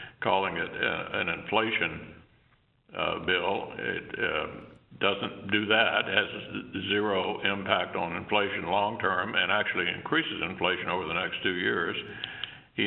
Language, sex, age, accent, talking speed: English, male, 60-79, American, 135 wpm